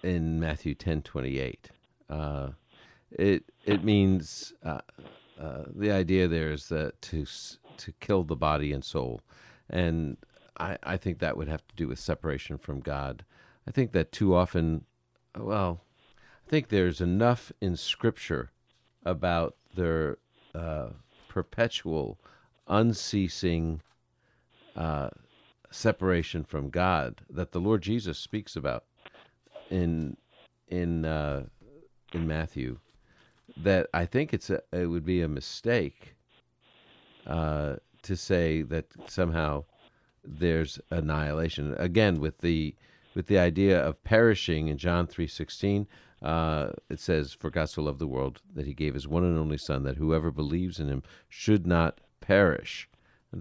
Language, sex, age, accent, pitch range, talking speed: English, male, 50-69, American, 75-95 Hz, 140 wpm